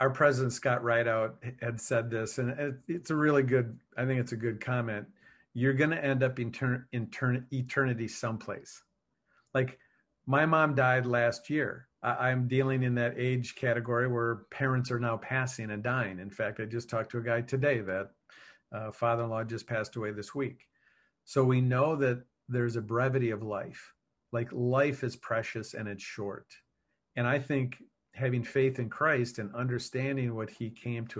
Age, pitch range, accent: 50-69, 115-135 Hz, American